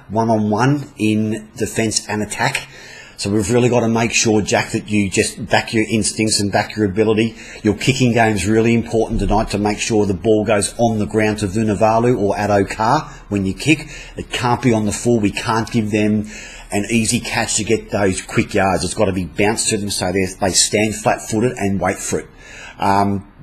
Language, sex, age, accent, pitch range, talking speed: English, male, 40-59, Australian, 100-115 Hz, 200 wpm